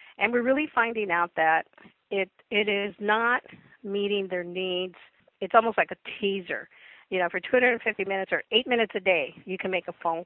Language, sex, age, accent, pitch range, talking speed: English, female, 50-69, American, 175-225 Hz, 195 wpm